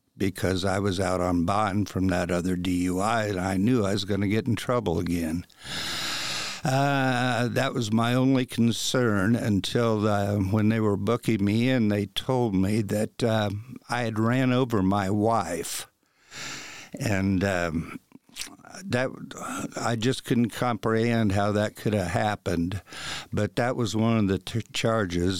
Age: 60-79